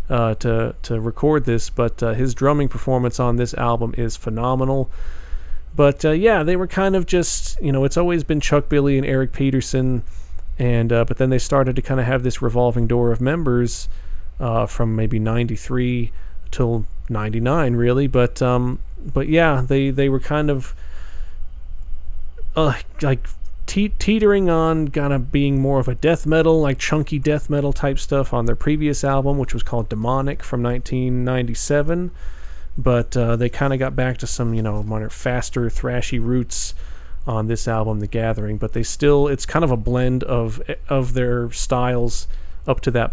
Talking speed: 175 wpm